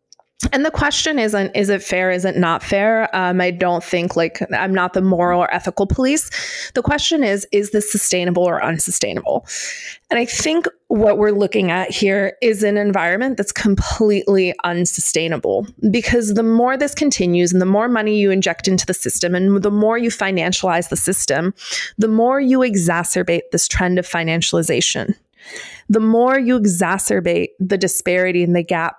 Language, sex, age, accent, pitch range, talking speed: English, female, 30-49, American, 180-235 Hz, 170 wpm